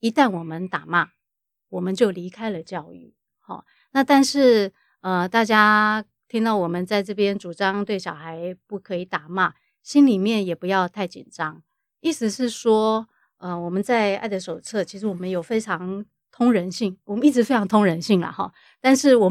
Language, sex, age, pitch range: Chinese, female, 30-49, 185-230 Hz